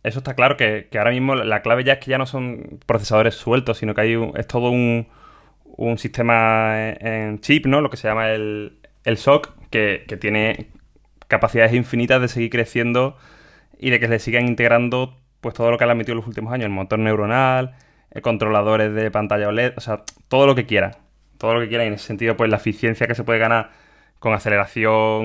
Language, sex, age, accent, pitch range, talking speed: Spanish, male, 20-39, Spanish, 110-125 Hz, 215 wpm